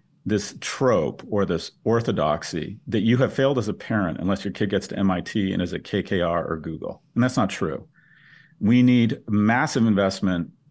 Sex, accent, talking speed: male, American, 180 wpm